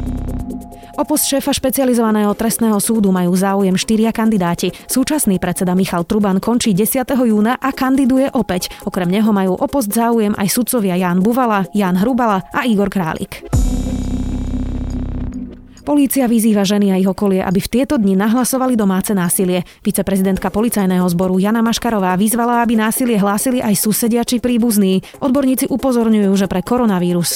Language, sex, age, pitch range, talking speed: Slovak, female, 20-39, 180-240 Hz, 140 wpm